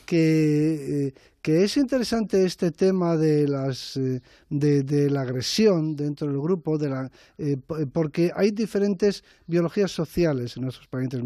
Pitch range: 135-175 Hz